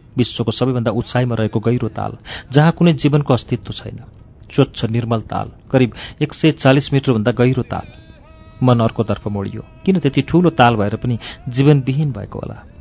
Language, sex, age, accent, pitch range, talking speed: English, male, 40-59, Indian, 110-130 Hz, 145 wpm